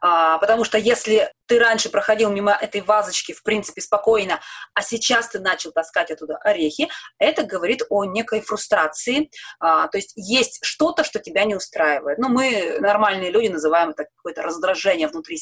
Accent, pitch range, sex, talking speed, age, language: native, 180-250 Hz, female, 160 wpm, 20-39, Russian